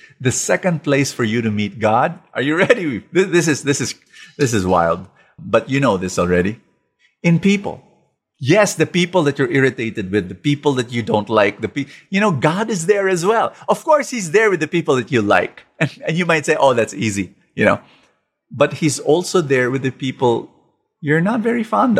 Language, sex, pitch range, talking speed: English, male, 115-165 Hz, 210 wpm